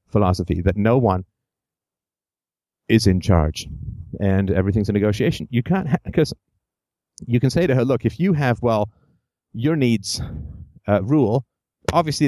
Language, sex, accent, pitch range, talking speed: English, male, American, 105-140 Hz, 140 wpm